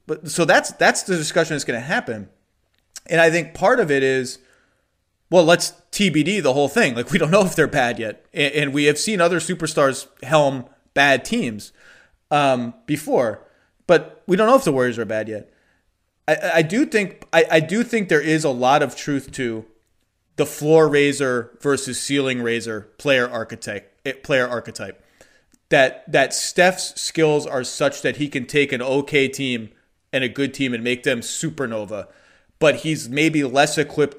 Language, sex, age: English, male, 30-49